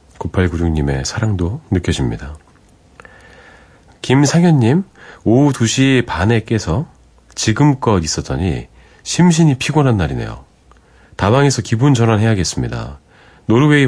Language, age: Korean, 40-59